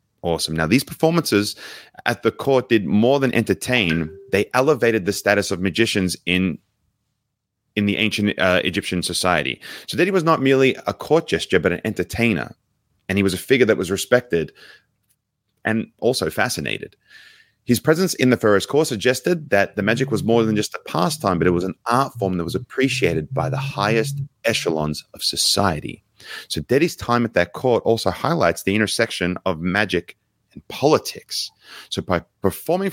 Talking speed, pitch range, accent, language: 175 wpm, 95-125 Hz, Australian, English